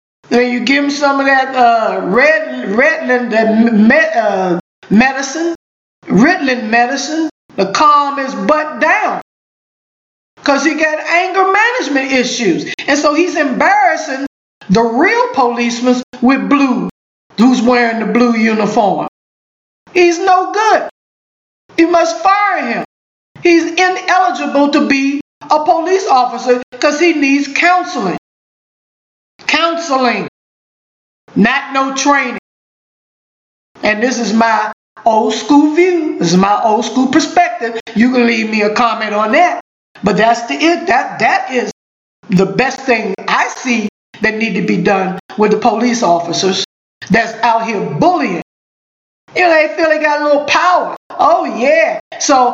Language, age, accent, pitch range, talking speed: English, 50-69, American, 235-325 Hz, 135 wpm